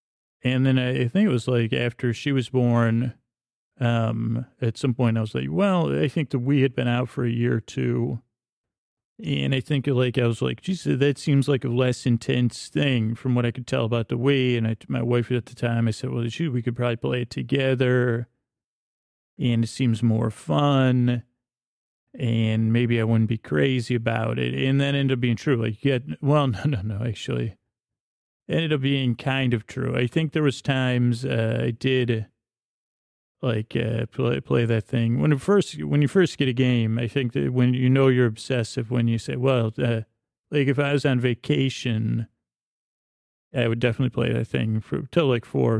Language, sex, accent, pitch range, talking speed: English, male, American, 115-130 Hz, 200 wpm